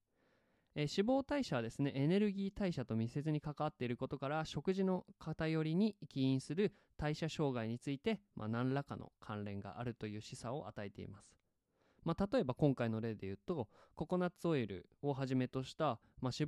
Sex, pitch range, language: male, 120-180 Hz, Japanese